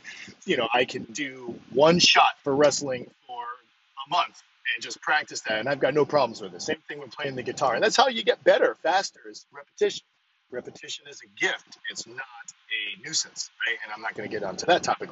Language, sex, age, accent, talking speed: English, male, 40-59, American, 220 wpm